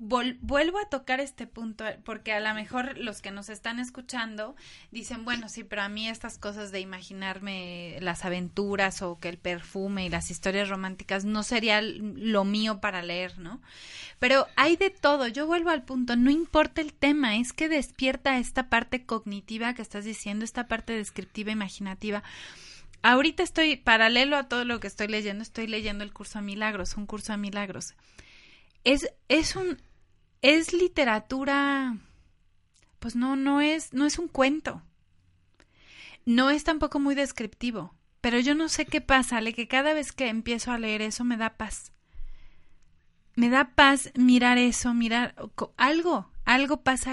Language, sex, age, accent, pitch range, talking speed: Spanish, female, 30-49, Mexican, 205-265 Hz, 165 wpm